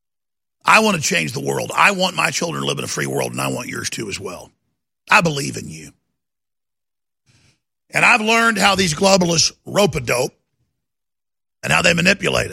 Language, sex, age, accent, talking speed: English, male, 50-69, American, 180 wpm